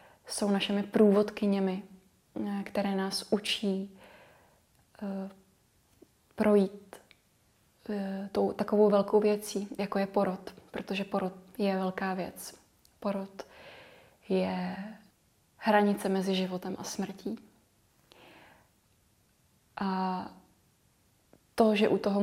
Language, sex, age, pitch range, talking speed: Czech, female, 20-39, 190-205 Hz, 90 wpm